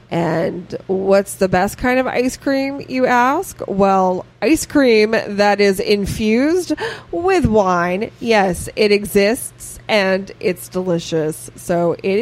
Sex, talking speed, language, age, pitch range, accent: female, 130 wpm, English, 20-39, 185-240 Hz, American